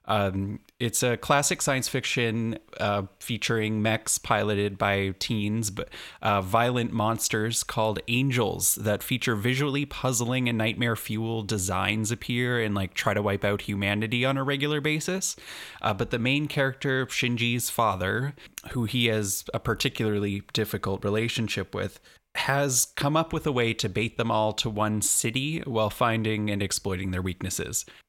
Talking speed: 155 wpm